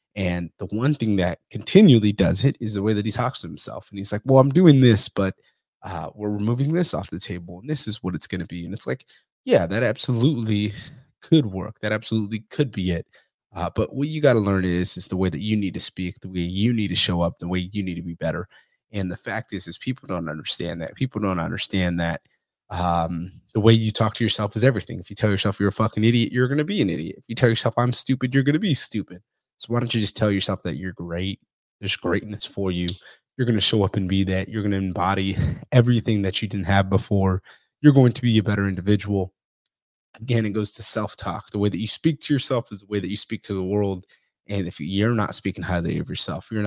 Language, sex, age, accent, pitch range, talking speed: English, male, 20-39, American, 95-115 Hz, 255 wpm